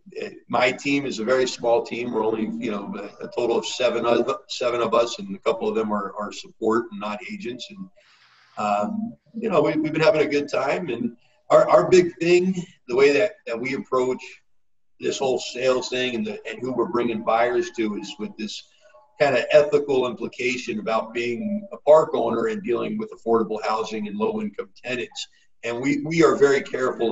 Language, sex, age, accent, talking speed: English, male, 50-69, American, 200 wpm